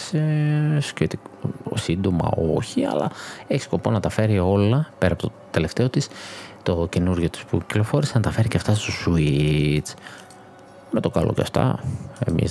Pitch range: 80-105 Hz